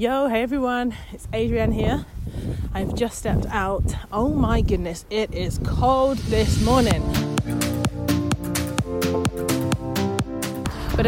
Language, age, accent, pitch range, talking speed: English, 20-39, British, 200-240 Hz, 105 wpm